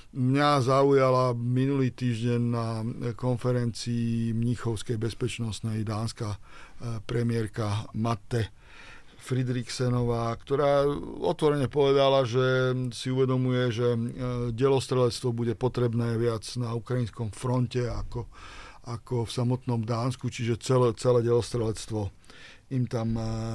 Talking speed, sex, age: 95 wpm, male, 50-69